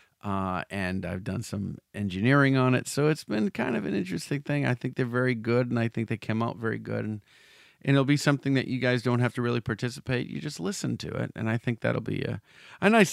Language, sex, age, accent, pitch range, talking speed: English, male, 40-59, American, 105-130 Hz, 250 wpm